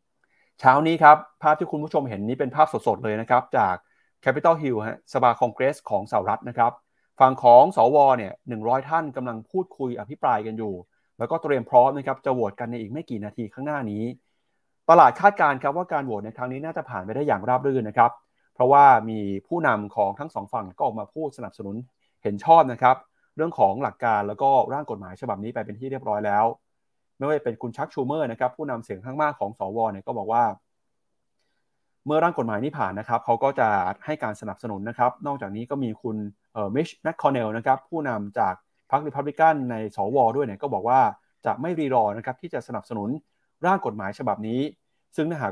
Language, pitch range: Thai, 110-150 Hz